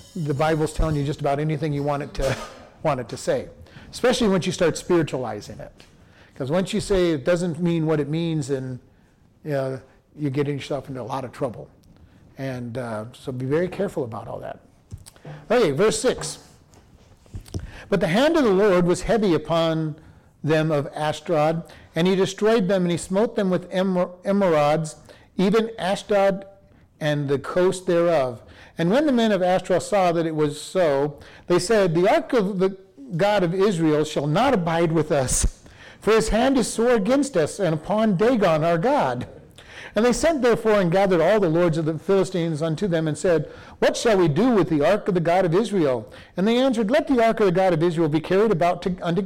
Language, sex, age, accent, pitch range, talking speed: English, male, 50-69, American, 150-205 Hz, 200 wpm